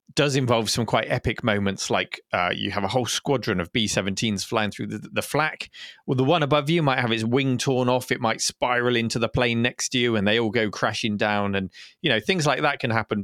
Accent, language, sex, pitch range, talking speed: British, English, male, 110-140 Hz, 250 wpm